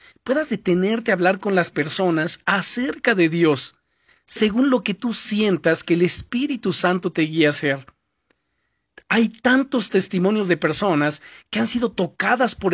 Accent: Mexican